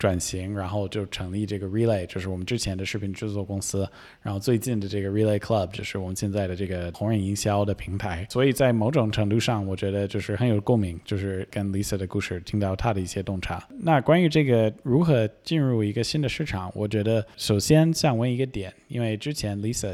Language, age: Chinese, 20-39